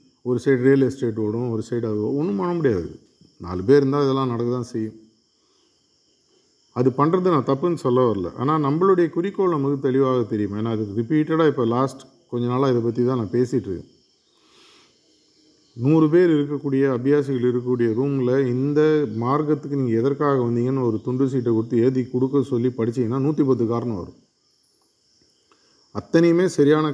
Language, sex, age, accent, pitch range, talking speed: Tamil, male, 50-69, native, 115-145 Hz, 150 wpm